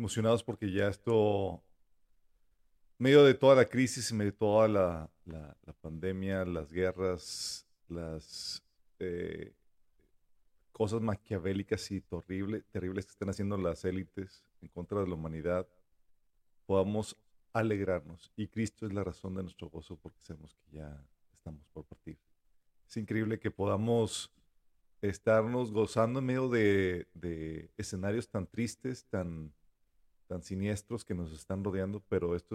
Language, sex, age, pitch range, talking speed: Spanish, male, 40-59, 85-105 Hz, 140 wpm